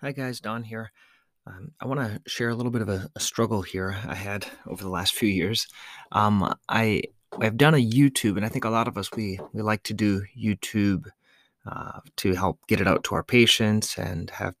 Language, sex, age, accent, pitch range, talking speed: English, male, 30-49, American, 100-125 Hz, 225 wpm